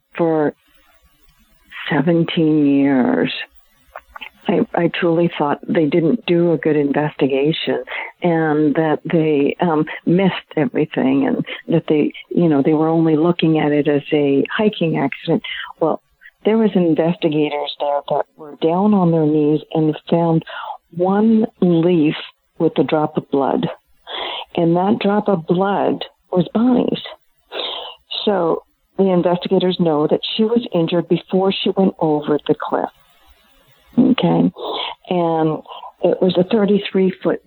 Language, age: English, 50-69